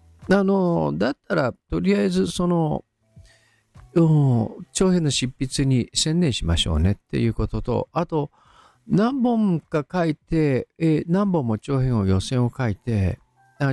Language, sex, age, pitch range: Japanese, male, 50-69, 105-165 Hz